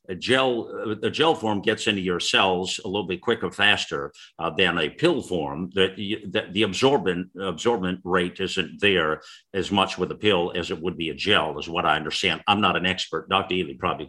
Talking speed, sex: 215 wpm, male